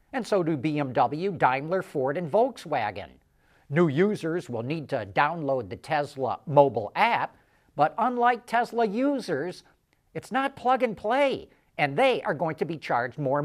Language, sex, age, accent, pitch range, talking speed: English, male, 50-69, American, 140-215 Hz, 155 wpm